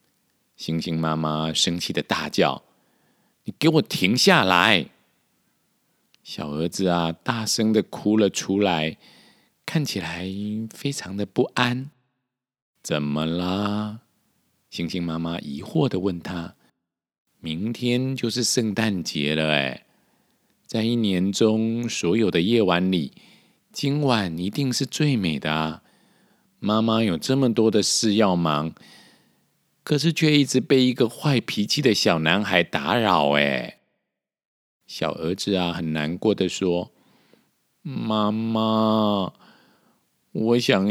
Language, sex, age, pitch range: Chinese, male, 50-69, 90-125 Hz